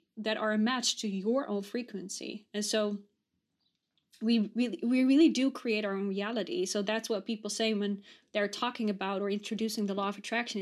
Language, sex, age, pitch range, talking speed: English, female, 20-39, 200-230 Hz, 190 wpm